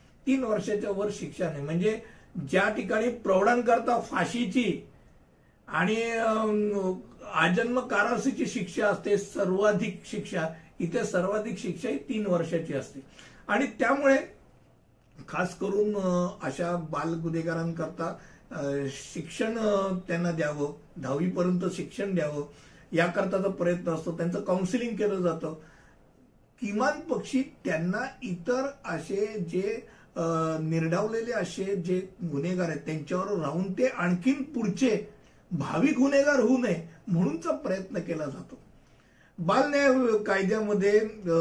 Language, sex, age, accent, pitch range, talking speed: Hindi, male, 60-79, native, 160-210 Hz, 65 wpm